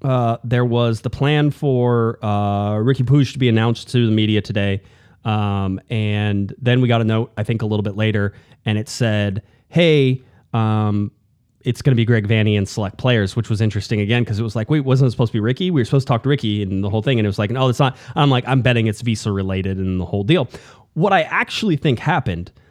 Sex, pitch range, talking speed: male, 105-130 Hz, 245 wpm